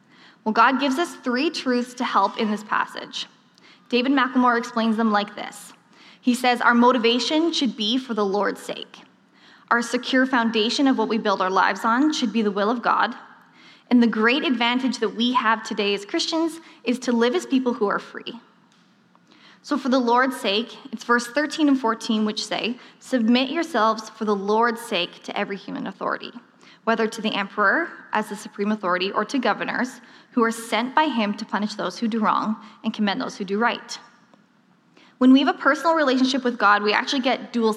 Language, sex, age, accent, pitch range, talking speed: English, female, 10-29, American, 215-255 Hz, 195 wpm